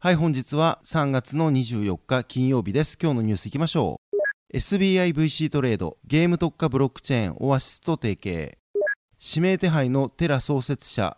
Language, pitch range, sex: Japanese, 120-165 Hz, male